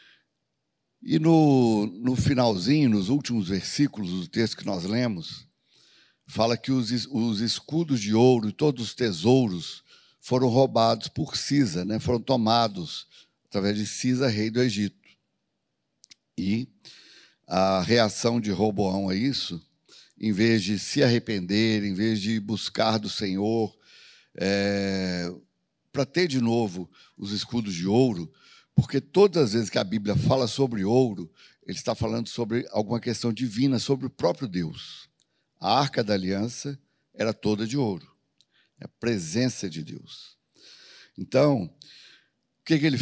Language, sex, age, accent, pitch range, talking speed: Portuguese, male, 60-79, Brazilian, 105-130 Hz, 140 wpm